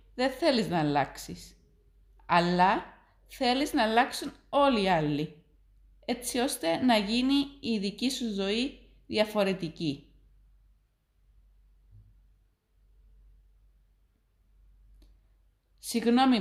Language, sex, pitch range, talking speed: Greek, female, 145-245 Hz, 75 wpm